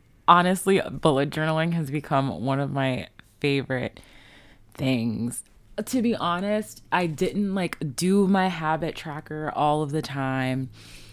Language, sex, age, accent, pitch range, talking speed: English, female, 20-39, American, 130-155 Hz, 130 wpm